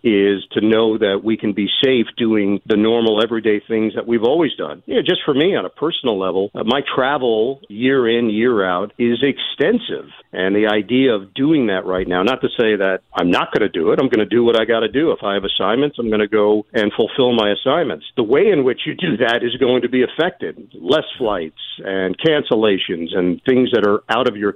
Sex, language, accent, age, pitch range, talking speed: male, English, American, 50-69, 105-130 Hz, 225 wpm